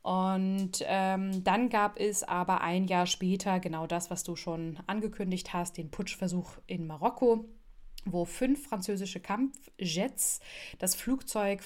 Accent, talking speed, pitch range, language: German, 135 wpm, 175-210 Hz, German